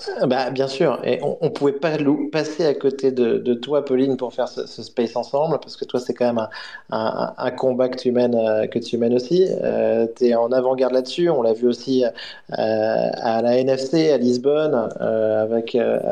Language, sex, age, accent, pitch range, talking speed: French, male, 30-49, French, 120-140 Hz, 210 wpm